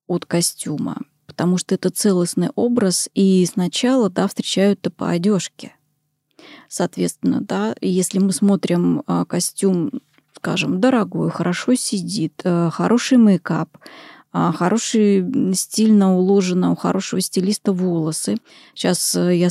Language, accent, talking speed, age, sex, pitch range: Russian, native, 105 wpm, 20-39, female, 180-225 Hz